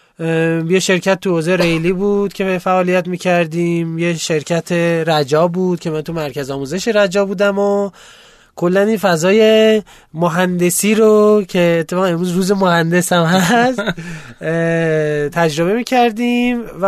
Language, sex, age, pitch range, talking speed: Persian, male, 20-39, 170-210 Hz, 125 wpm